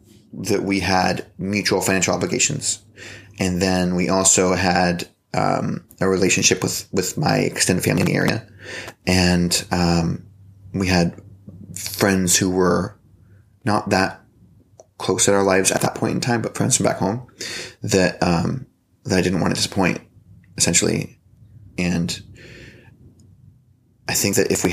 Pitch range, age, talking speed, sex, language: 90-105 Hz, 20-39, 145 wpm, male, English